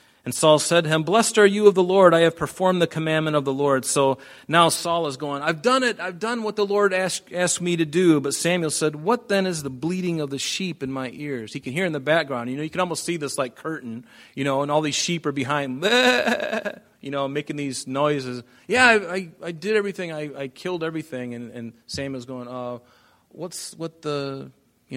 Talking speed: 240 wpm